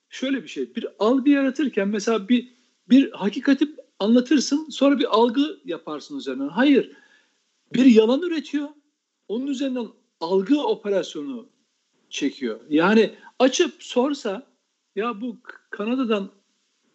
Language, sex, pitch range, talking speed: Turkish, male, 205-280 Hz, 110 wpm